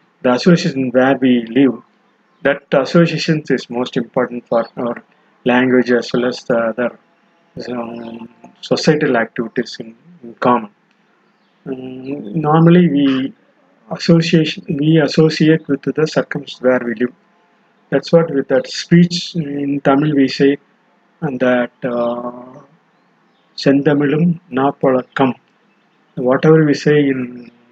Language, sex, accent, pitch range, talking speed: Tamil, male, native, 125-160 Hz, 115 wpm